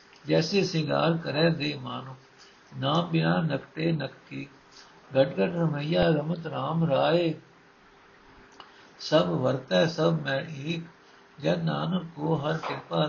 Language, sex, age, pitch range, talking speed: Punjabi, male, 60-79, 135-165 Hz, 120 wpm